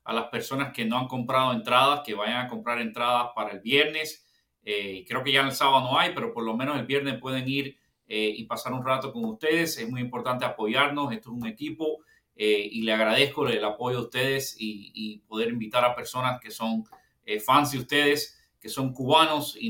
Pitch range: 125-145 Hz